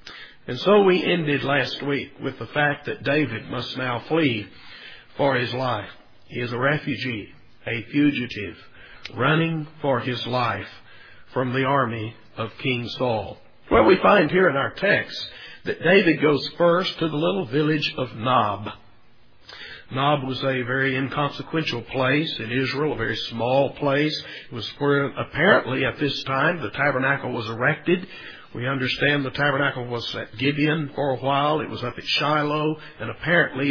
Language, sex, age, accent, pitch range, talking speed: English, male, 50-69, American, 125-155 Hz, 160 wpm